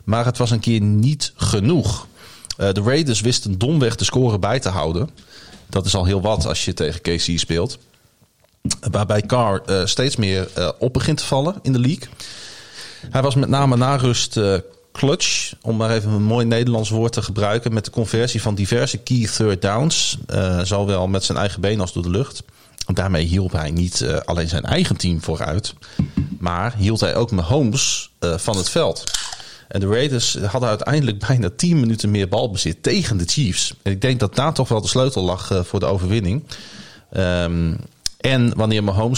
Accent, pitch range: Dutch, 95-125 Hz